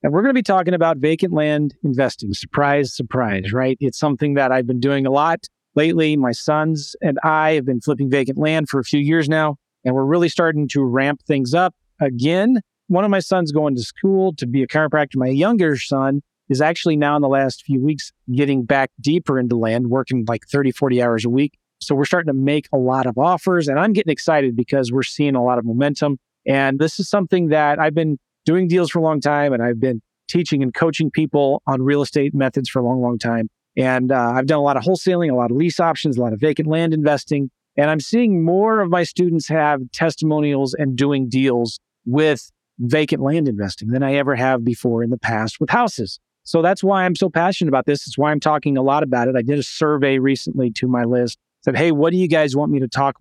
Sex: male